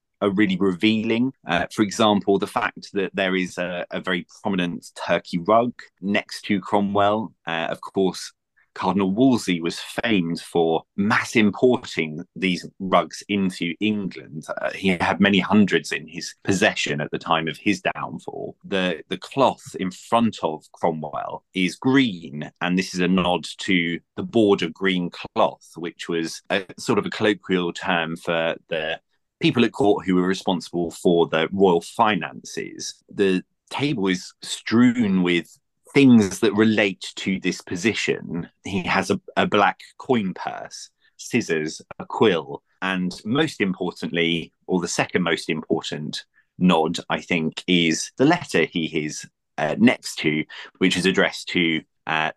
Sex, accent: male, British